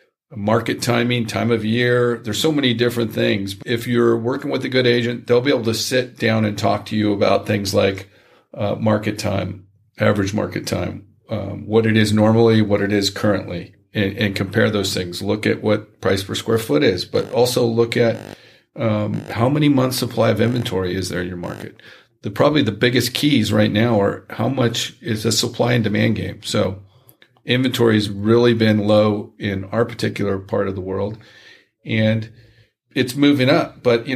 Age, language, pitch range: 40-59, English, 105-120 Hz